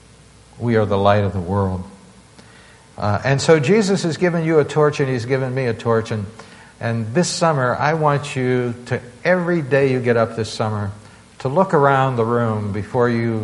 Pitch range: 110-145 Hz